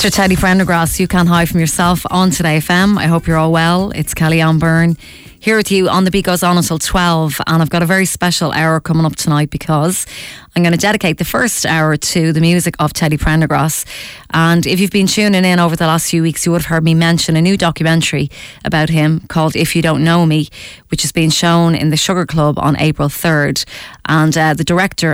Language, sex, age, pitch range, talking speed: English, female, 20-39, 150-170 Hz, 230 wpm